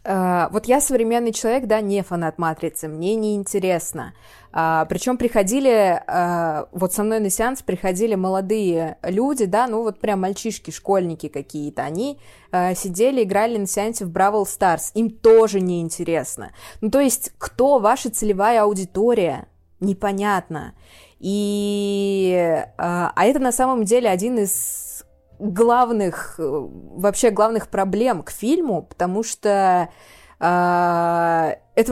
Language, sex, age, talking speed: Russian, female, 20-39, 120 wpm